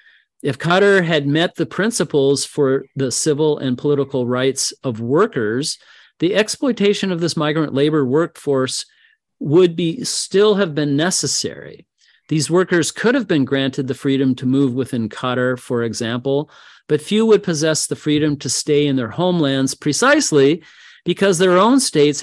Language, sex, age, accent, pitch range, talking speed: English, male, 40-59, American, 130-165 Hz, 155 wpm